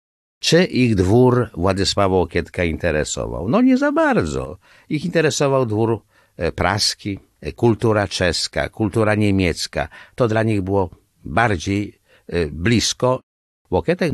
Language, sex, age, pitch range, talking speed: Polish, male, 60-79, 95-125 Hz, 105 wpm